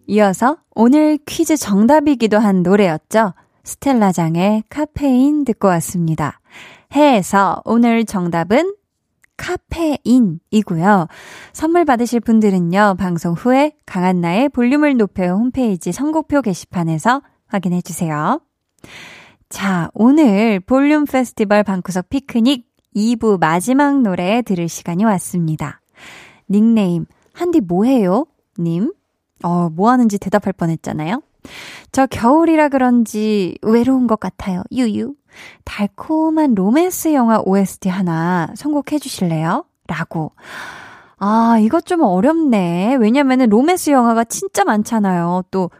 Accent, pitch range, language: native, 185-265 Hz, Korean